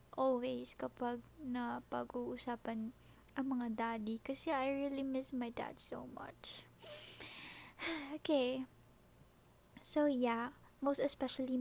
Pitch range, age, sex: 240-275 Hz, 20-39, female